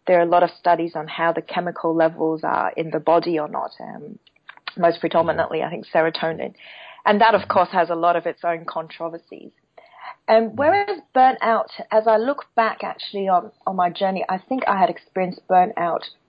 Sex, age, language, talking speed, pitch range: female, 30-49, English, 190 wpm, 170-205 Hz